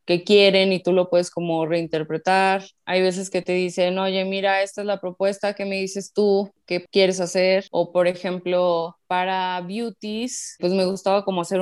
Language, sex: Spanish, female